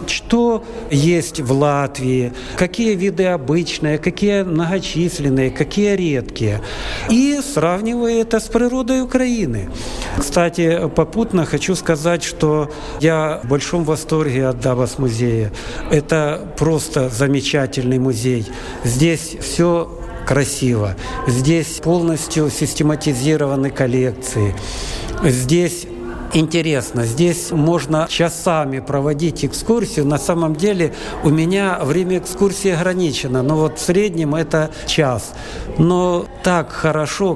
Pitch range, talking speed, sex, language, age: 140-180 Hz, 100 wpm, male, Russian, 50-69